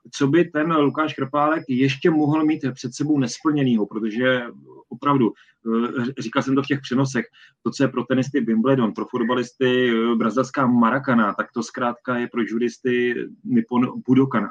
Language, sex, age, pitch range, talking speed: Czech, male, 30-49, 120-150 Hz, 155 wpm